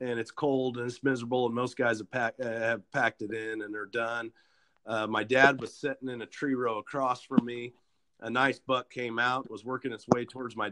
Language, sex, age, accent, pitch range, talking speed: English, male, 40-59, American, 115-135 Hz, 230 wpm